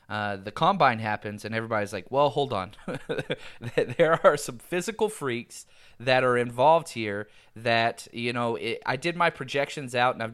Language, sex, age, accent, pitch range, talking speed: English, male, 30-49, American, 115-145 Hz, 170 wpm